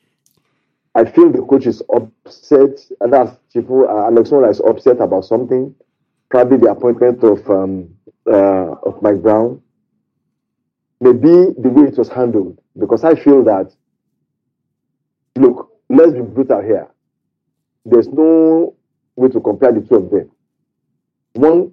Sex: male